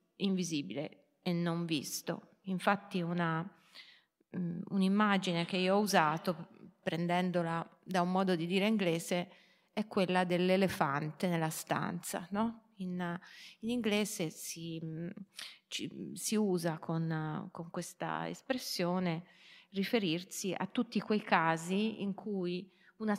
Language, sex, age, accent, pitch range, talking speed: Italian, female, 30-49, native, 175-215 Hz, 110 wpm